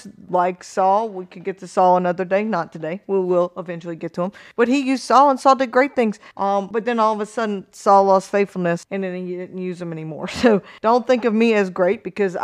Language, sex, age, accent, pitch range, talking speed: English, female, 40-59, American, 180-220 Hz, 245 wpm